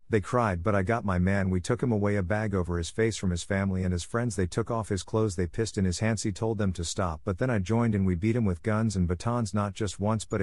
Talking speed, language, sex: 305 wpm, English, male